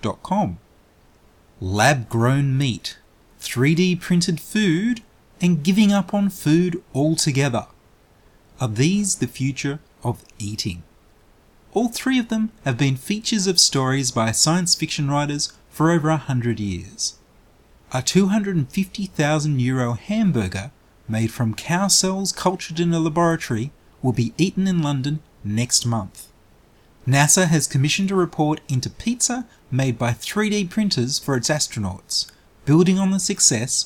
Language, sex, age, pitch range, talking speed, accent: English, male, 30-49, 120-180 Hz, 130 wpm, Australian